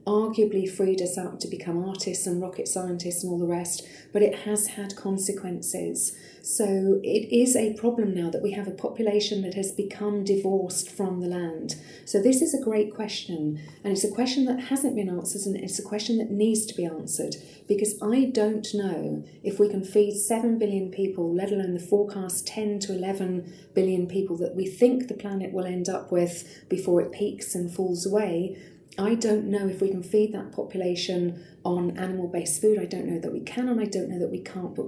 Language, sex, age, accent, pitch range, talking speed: English, female, 40-59, British, 180-210 Hz, 210 wpm